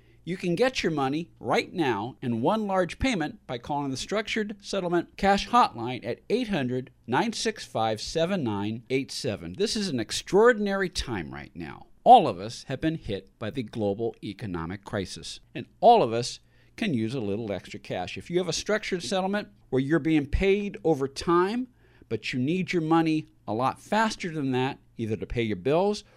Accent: American